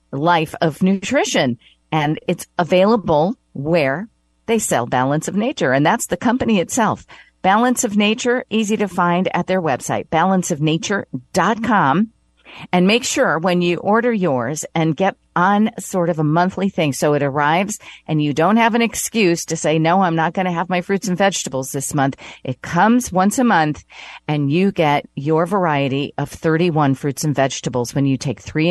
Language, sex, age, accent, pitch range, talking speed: English, female, 50-69, American, 140-200 Hz, 175 wpm